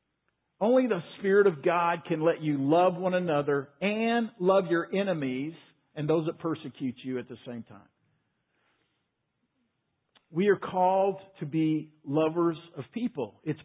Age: 50-69